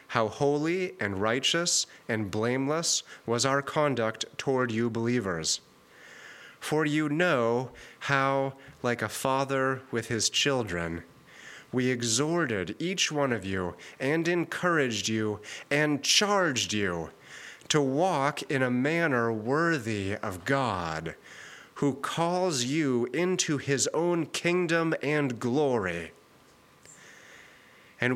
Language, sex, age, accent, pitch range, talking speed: English, male, 30-49, American, 115-150 Hz, 110 wpm